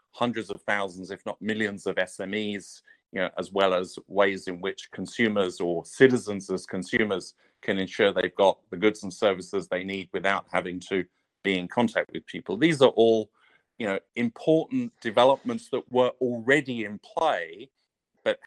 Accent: British